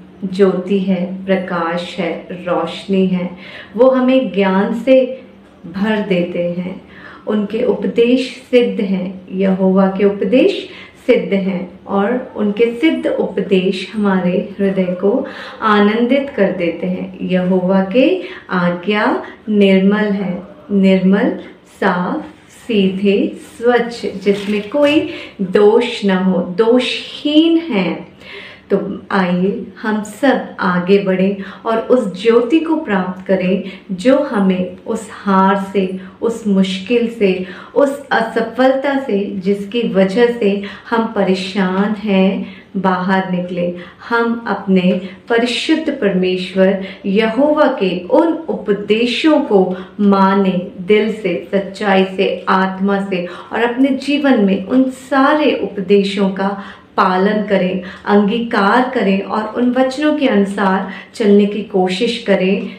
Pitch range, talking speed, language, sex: 190-235 Hz, 115 wpm, Hindi, female